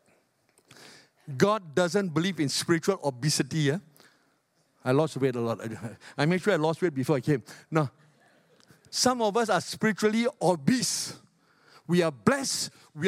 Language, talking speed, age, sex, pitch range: English, 145 wpm, 50-69, male, 140-195 Hz